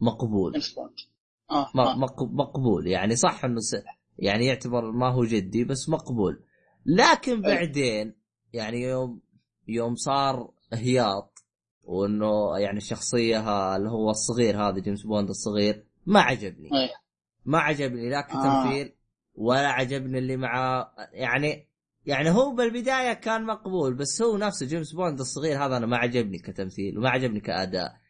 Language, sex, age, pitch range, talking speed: Arabic, male, 20-39, 110-150 Hz, 125 wpm